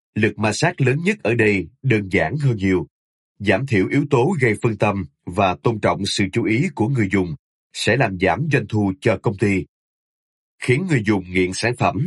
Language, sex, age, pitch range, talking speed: Vietnamese, male, 20-39, 100-125 Hz, 205 wpm